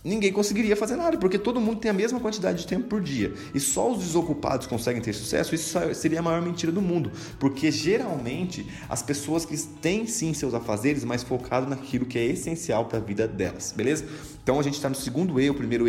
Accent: Brazilian